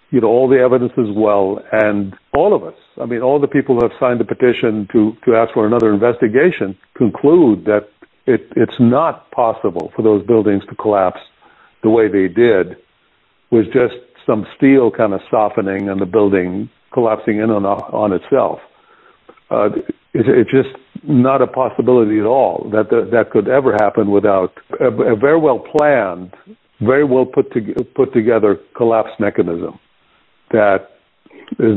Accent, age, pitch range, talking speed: American, 60-79, 110-135 Hz, 165 wpm